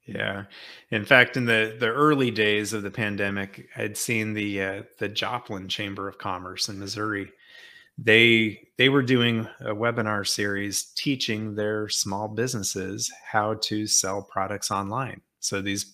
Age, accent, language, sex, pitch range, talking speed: 30-49, American, English, male, 105-115 Hz, 150 wpm